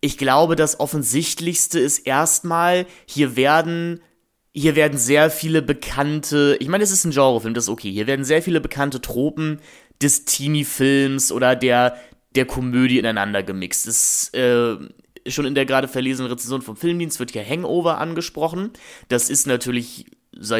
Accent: German